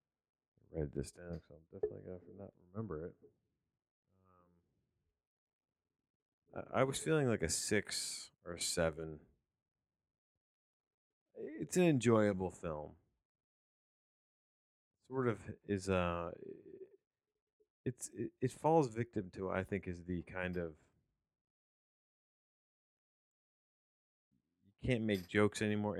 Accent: American